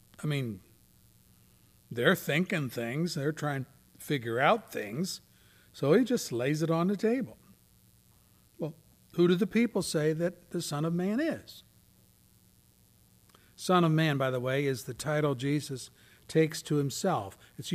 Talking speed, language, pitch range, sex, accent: 150 wpm, English, 135-175 Hz, male, American